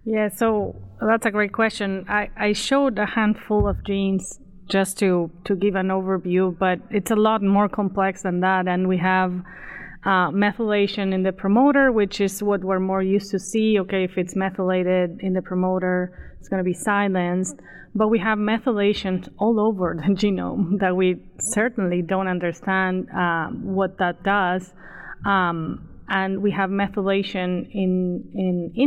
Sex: female